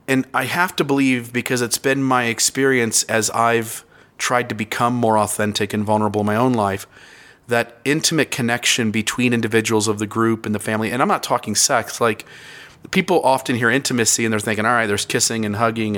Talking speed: 200 wpm